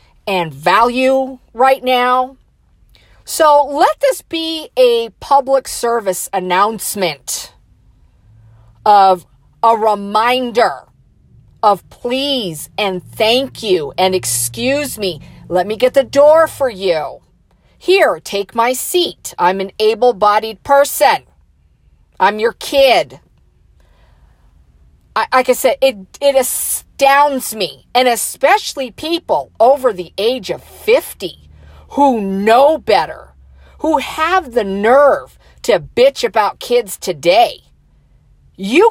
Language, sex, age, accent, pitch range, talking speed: English, female, 40-59, American, 195-295 Hz, 110 wpm